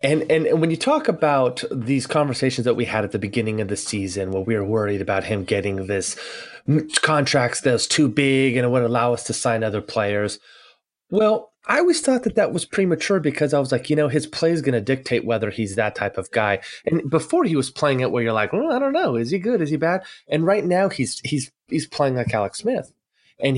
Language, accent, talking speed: English, American, 240 wpm